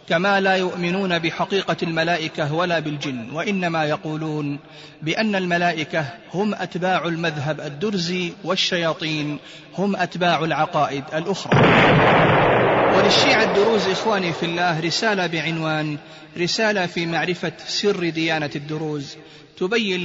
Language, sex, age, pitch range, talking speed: Arabic, male, 30-49, 155-180 Hz, 100 wpm